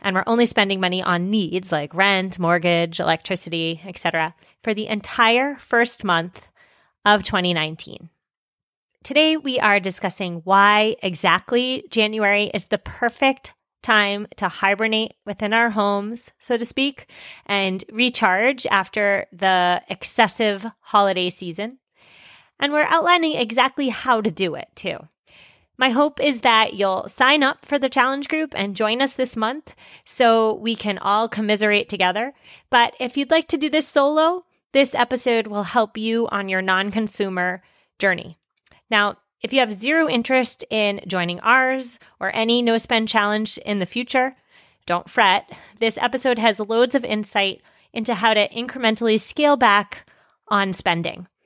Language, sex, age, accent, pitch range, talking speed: English, female, 30-49, American, 195-250 Hz, 145 wpm